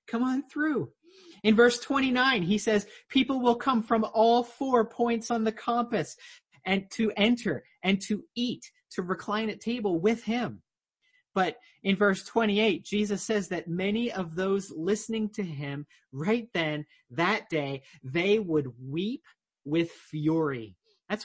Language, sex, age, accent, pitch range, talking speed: English, male, 30-49, American, 140-220 Hz, 150 wpm